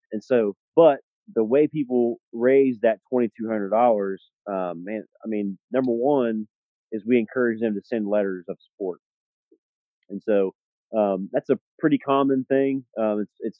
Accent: American